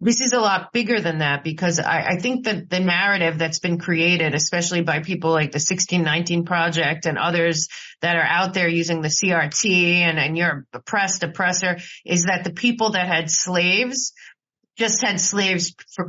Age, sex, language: 30-49, female, English